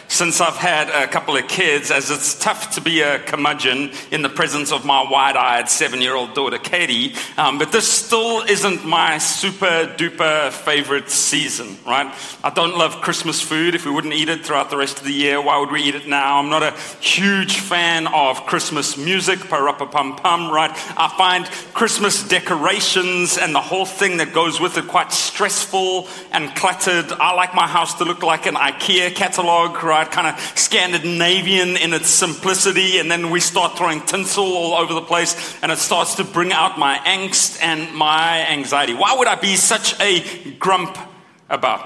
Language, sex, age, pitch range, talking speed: English, male, 40-59, 155-190 Hz, 190 wpm